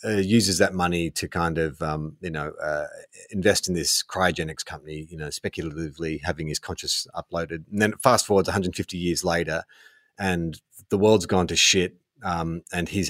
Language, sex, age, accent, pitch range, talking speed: English, male, 30-49, Australian, 90-110 Hz, 180 wpm